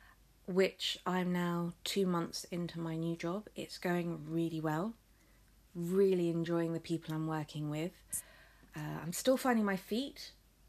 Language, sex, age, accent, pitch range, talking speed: English, female, 20-39, British, 150-185 Hz, 145 wpm